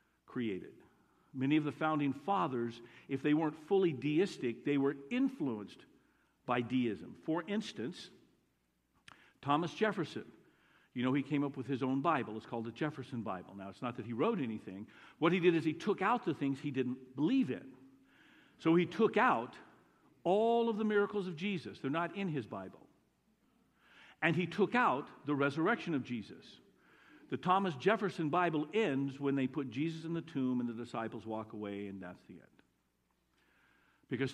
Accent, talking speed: American, 175 wpm